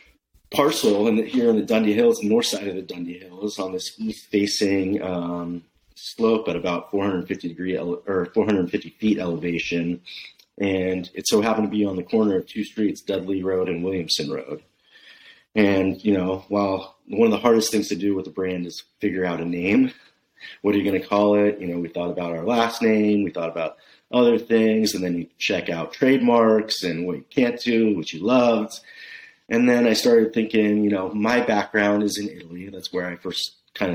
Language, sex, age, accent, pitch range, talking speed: English, male, 30-49, American, 90-105 Hz, 205 wpm